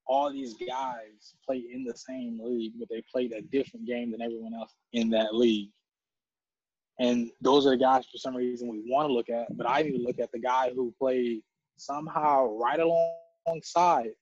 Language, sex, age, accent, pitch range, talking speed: English, male, 20-39, American, 115-160 Hz, 195 wpm